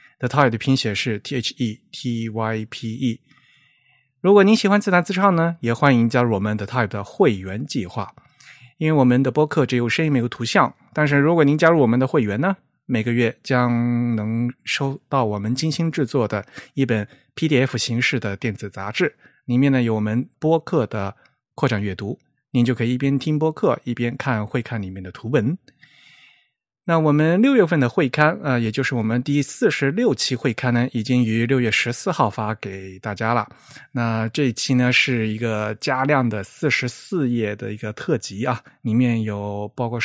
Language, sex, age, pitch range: Chinese, male, 20-39, 110-140 Hz